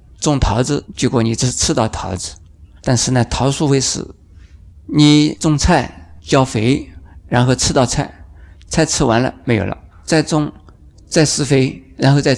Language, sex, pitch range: Chinese, male, 85-140 Hz